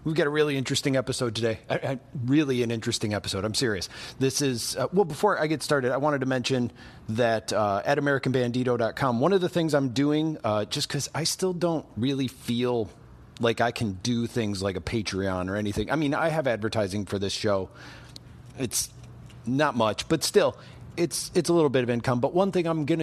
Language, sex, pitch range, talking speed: English, male, 115-150 Hz, 210 wpm